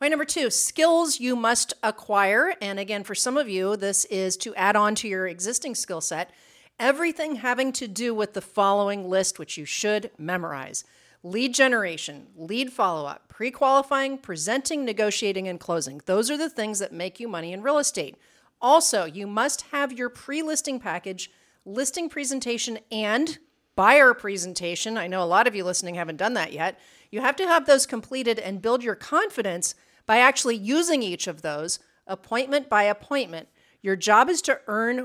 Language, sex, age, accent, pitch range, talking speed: English, female, 40-59, American, 195-270 Hz, 180 wpm